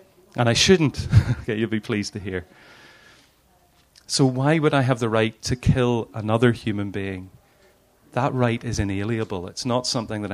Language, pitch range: English, 105-130 Hz